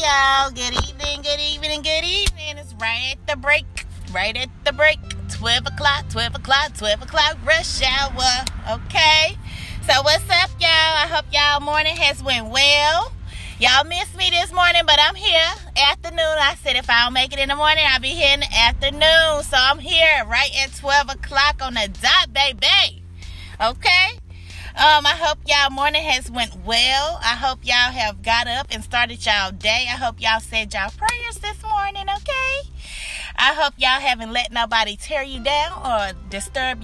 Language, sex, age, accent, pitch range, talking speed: English, female, 20-39, American, 230-305 Hz, 180 wpm